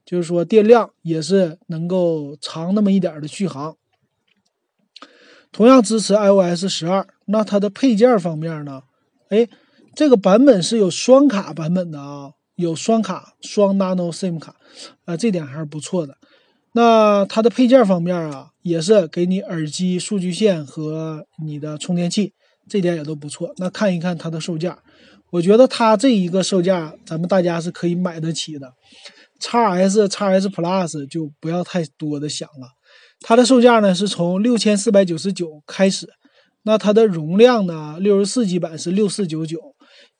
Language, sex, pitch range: Chinese, male, 165-215 Hz